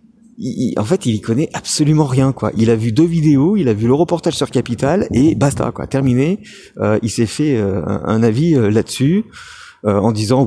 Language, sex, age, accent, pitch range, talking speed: French, male, 50-69, French, 105-140 Hz, 225 wpm